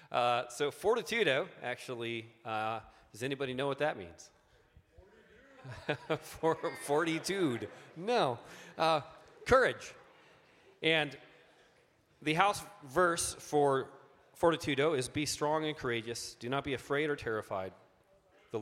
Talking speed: 105 wpm